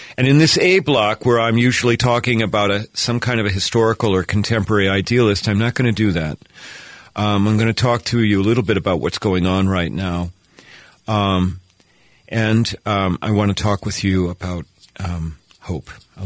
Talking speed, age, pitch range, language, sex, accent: 200 wpm, 50-69, 95-115 Hz, English, male, American